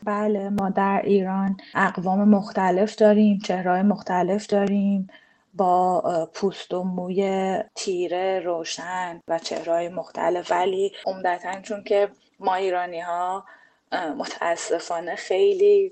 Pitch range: 160-185 Hz